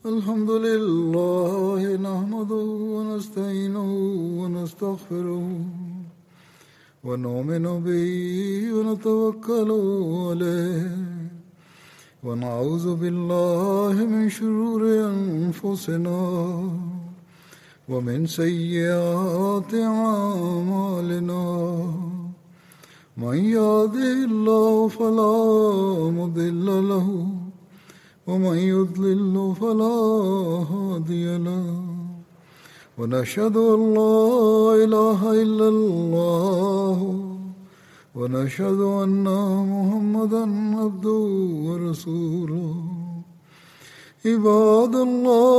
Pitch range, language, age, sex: 175-215 Hz, Malayalam, 60-79, male